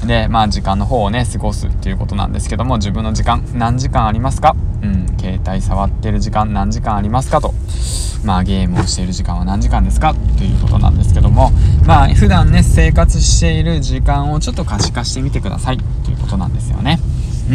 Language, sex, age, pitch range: Japanese, male, 20-39, 95-110 Hz